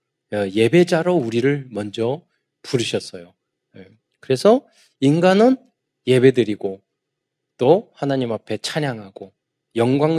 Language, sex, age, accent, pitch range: Korean, male, 20-39, native, 105-150 Hz